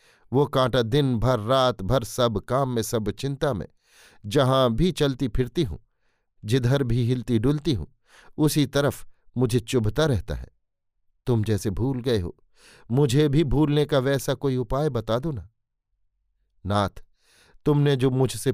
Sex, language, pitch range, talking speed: male, Hindi, 110-140 Hz, 150 wpm